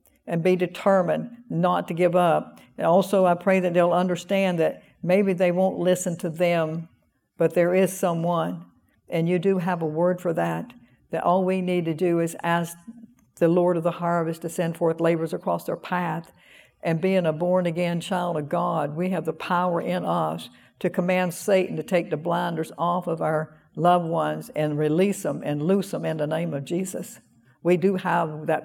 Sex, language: female, English